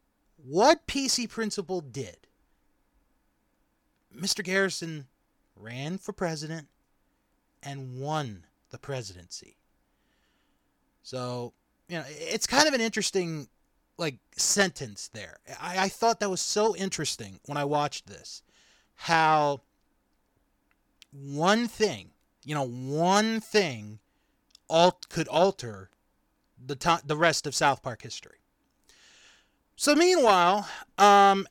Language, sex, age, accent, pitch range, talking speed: English, male, 30-49, American, 140-210 Hz, 105 wpm